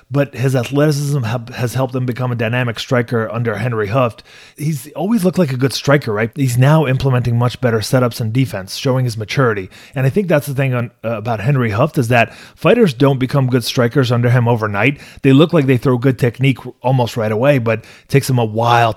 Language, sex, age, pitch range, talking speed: English, male, 30-49, 115-135 Hz, 220 wpm